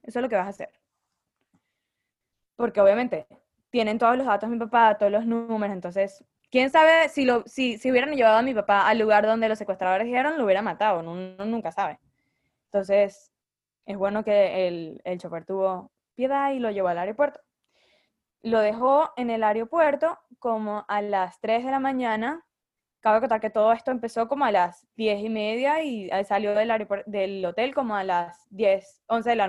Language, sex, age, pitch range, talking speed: English, female, 10-29, 200-255 Hz, 190 wpm